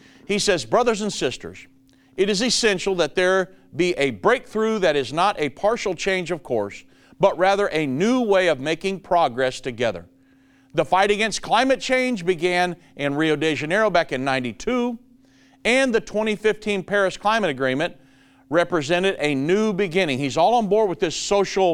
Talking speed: 165 wpm